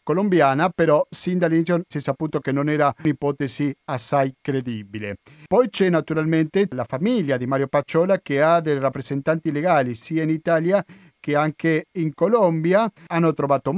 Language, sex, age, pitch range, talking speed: Italian, male, 50-69, 130-170 Hz, 155 wpm